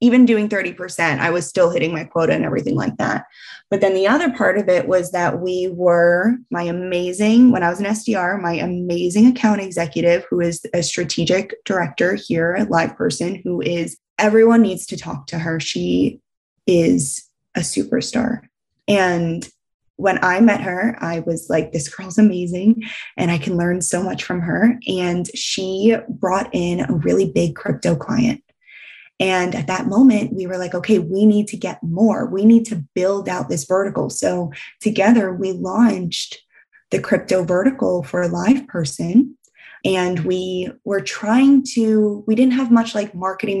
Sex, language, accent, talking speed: female, English, American, 175 wpm